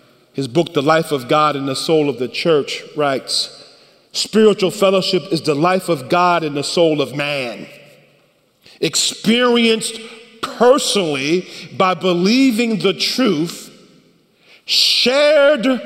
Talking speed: 120 wpm